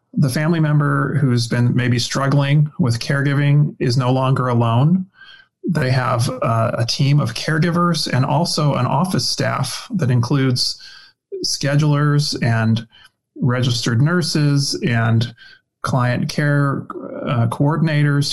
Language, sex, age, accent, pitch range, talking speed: English, male, 30-49, American, 120-150 Hz, 120 wpm